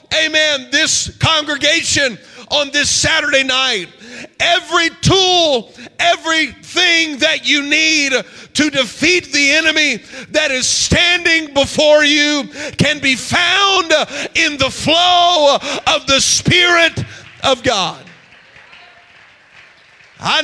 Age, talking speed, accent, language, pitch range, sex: 50-69, 100 wpm, American, English, 255-315 Hz, male